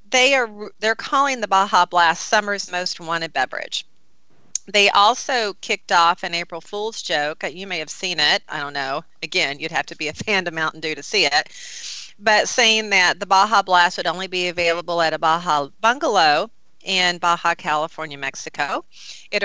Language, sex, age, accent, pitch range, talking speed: English, female, 40-59, American, 160-210 Hz, 180 wpm